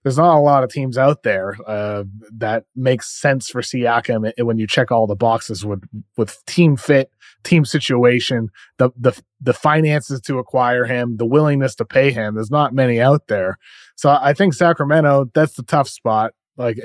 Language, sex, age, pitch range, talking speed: English, male, 20-39, 125-150 Hz, 185 wpm